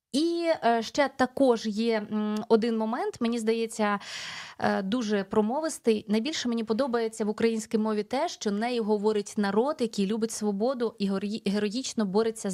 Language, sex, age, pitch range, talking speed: Ukrainian, female, 20-39, 210-250 Hz, 130 wpm